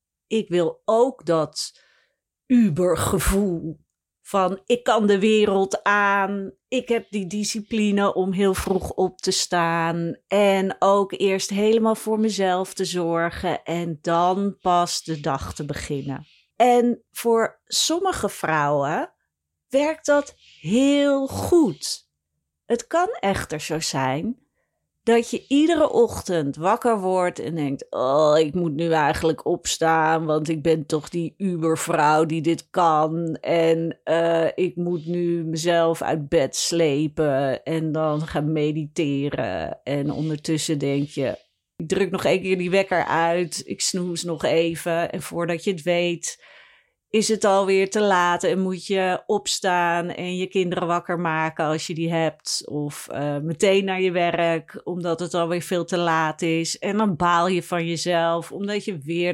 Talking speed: 150 wpm